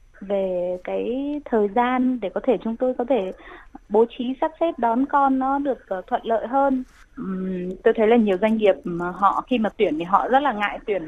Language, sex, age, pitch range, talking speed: Vietnamese, female, 20-39, 205-265 Hz, 205 wpm